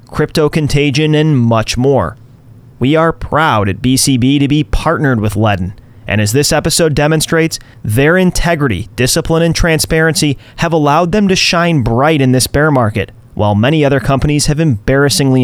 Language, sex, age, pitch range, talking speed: English, male, 30-49, 120-165 Hz, 160 wpm